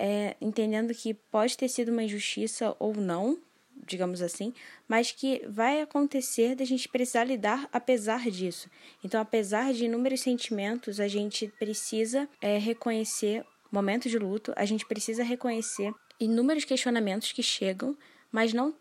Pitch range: 200-245 Hz